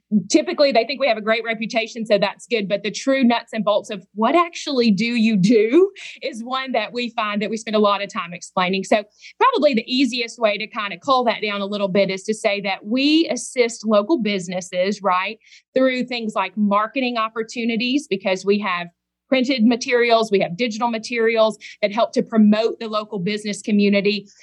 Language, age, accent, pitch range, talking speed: English, 30-49, American, 205-240 Hz, 200 wpm